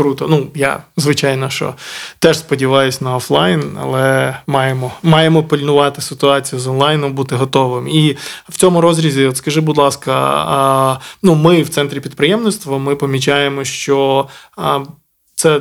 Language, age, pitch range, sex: Ukrainian, 20-39, 135-150 Hz, male